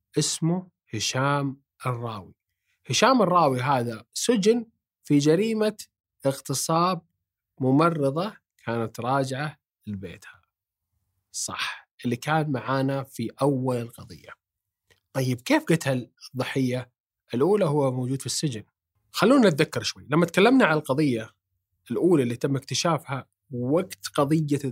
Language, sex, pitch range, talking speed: Arabic, male, 120-165 Hz, 105 wpm